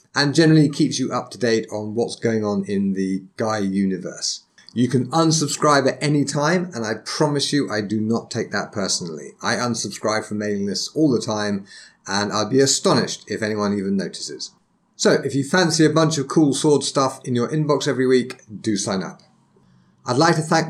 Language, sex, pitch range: English, male, 105-140 Hz